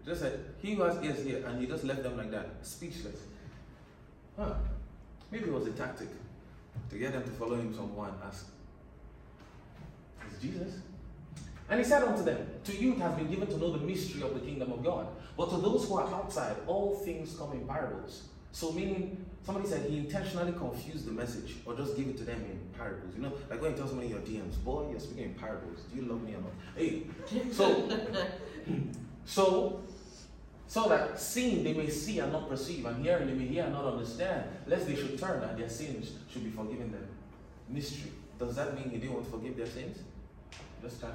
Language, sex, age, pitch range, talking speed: English, male, 20-39, 115-185 Hz, 210 wpm